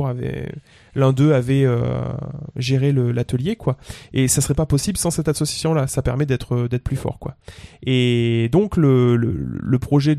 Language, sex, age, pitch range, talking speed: French, male, 20-39, 125-155 Hz, 175 wpm